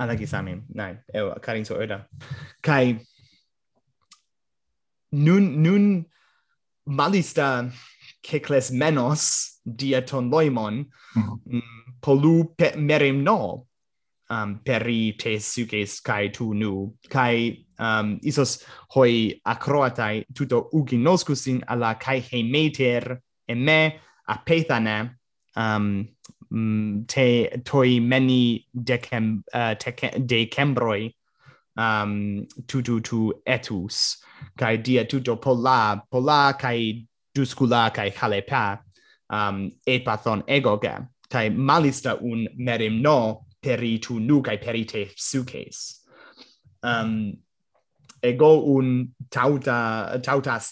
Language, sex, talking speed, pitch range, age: Greek, male, 85 wpm, 110-135 Hz, 20-39